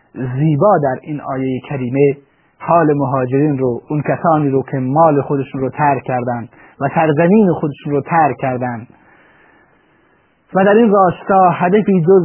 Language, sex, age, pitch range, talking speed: Persian, male, 30-49, 130-170 Hz, 140 wpm